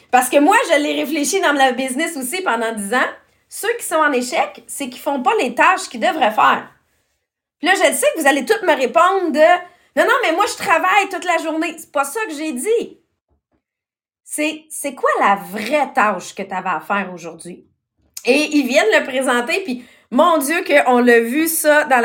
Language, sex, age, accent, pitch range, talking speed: English, female, 30-49, Canadian, 245-330 Hz, 215 wpm